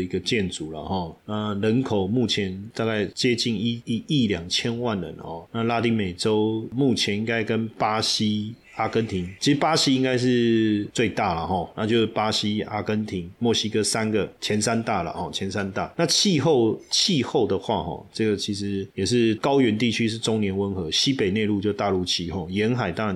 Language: Chinese